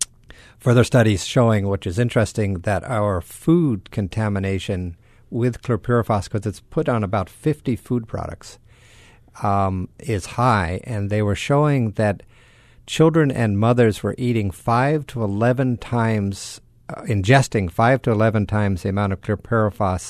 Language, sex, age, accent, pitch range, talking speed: English, male, 50-69, American, 100-120 Hz, 140 wpm